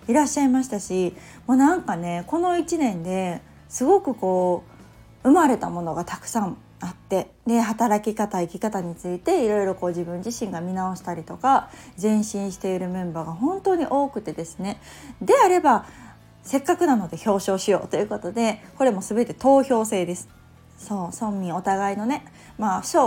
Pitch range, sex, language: 180-255 Hz, female, Japanese